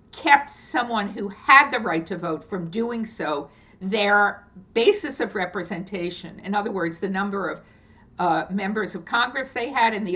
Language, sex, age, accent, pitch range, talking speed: English, female, 60-79, American, 170-225 Hz, 170 wpm